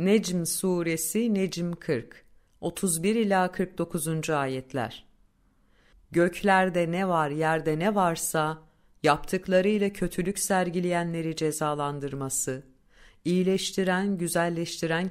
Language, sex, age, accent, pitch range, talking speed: Turkish, female, 50-69, native, 155-190 Hz, 85 wpm